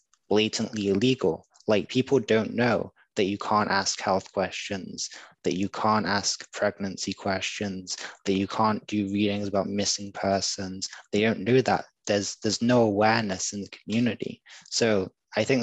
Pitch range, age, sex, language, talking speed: 100-110 Hz, 20-39, male, English, 155 wpm